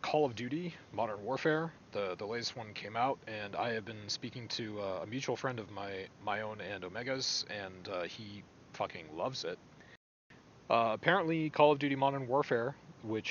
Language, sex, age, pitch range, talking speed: English, male, 30-49, 100-125 Hz, 185 wpm